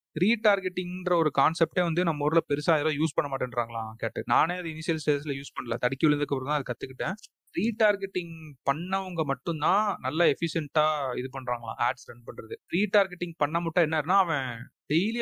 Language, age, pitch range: Tamil, 30-49, 135-180 Hz